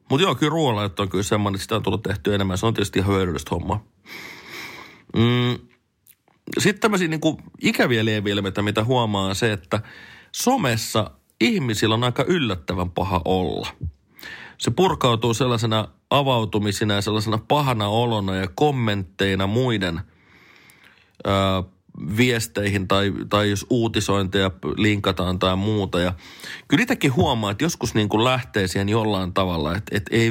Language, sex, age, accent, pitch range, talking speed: Finnish, male, 30-49, native, 95-120 Hz, 140 wpm